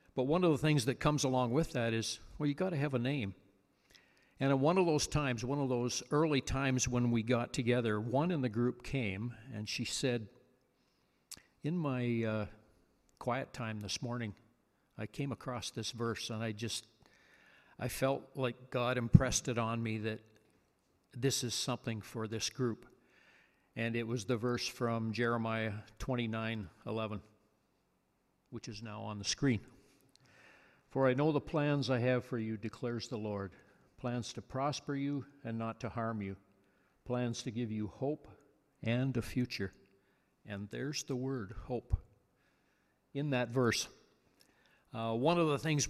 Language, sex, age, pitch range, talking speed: English, male, 60-79, 110-135 Hz, 165 wpm